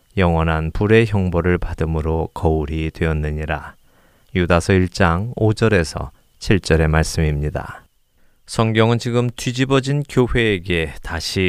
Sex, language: male, Korean